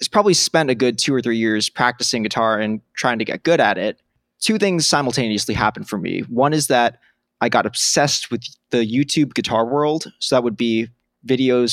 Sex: male